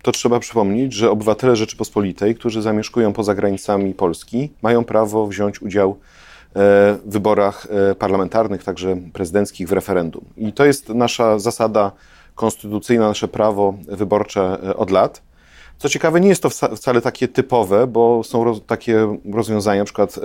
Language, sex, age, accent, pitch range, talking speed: Polish, male, 40-59, native, 105-125 Hz, 140 wpm